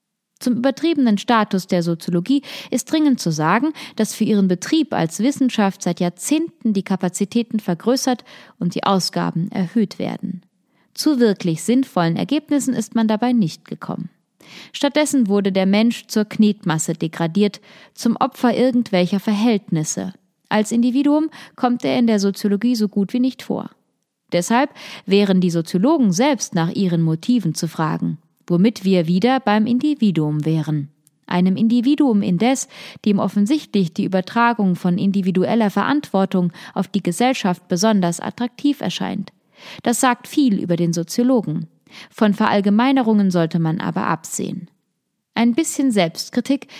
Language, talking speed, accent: German, 135 wpm, German